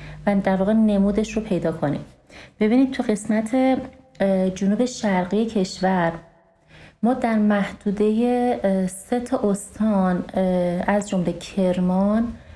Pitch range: 185-220 Hz